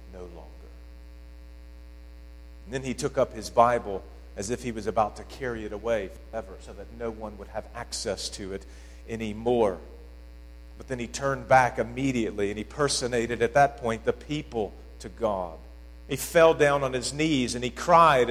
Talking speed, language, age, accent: 175 wpm, English, 50-69, American